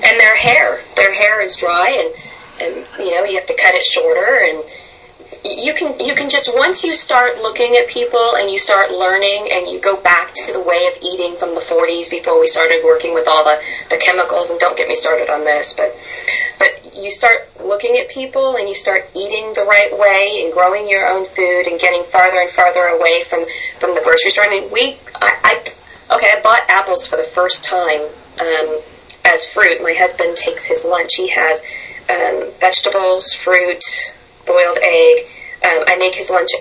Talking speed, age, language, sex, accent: 205 wpm, 30-49, English, female, American